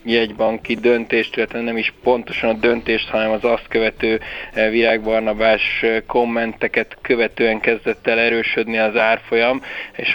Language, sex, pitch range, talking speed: Hungarian, male, 105-115 Hz, 125 wpm